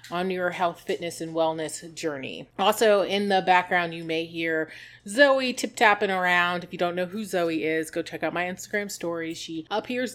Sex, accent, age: female, American, 30-49